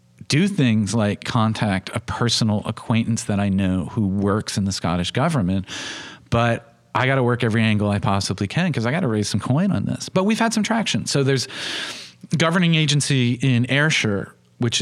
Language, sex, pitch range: English, male, 105-135 Hz